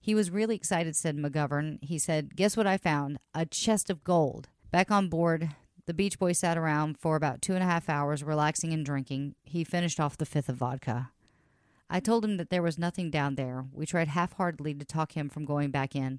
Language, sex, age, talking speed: English, female, 40-59, 220 wpm